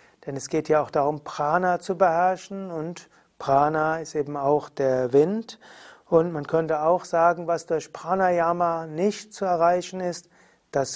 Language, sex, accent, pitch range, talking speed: German, male, German, 145-180 Hz, 160 wpm